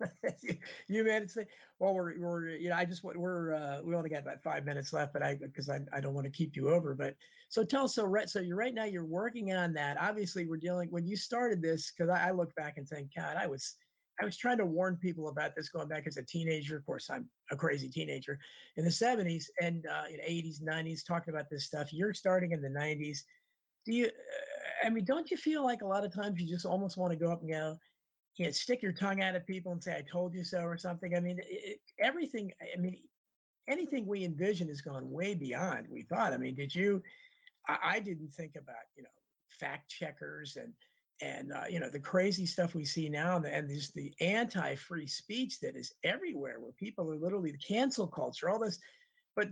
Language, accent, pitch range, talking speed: English, American, 160-215 Hz, 235 wpm